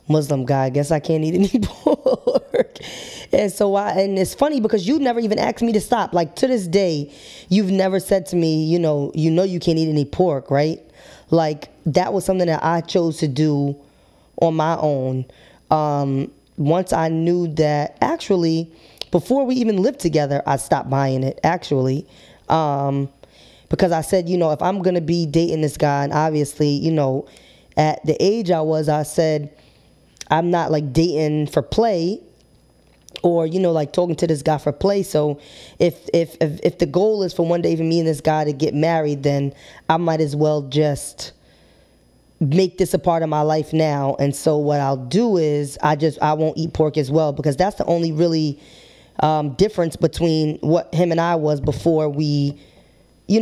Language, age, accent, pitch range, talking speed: English, 20-39, American, 150-175 Hz, 195 wpm